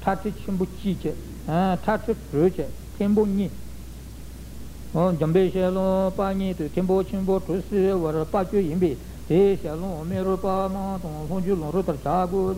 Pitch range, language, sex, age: 155-200 Hz, Italian, male, 60-79